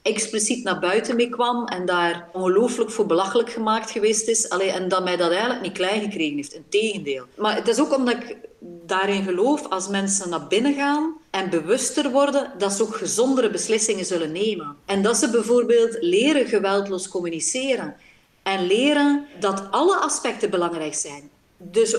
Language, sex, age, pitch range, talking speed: Dutch, female, 40-59, 195-280 Hz, 170 wpm